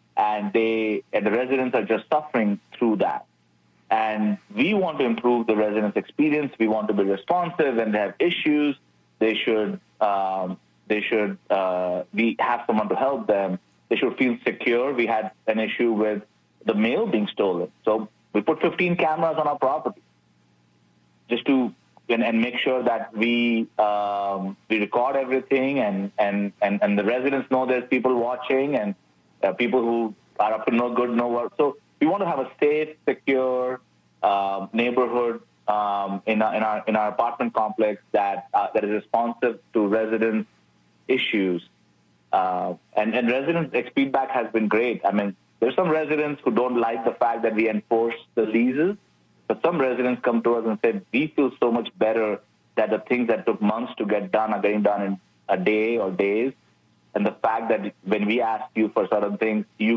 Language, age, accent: English, 30-49, Indian